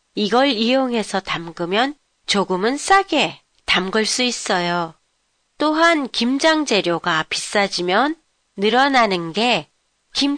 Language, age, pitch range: Japanese, 40-59, 190-275 Hz